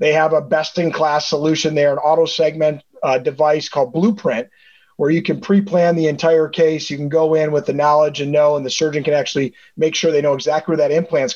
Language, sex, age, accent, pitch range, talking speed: English, male, 30-49, American, 150-175 Hz, 210 wpm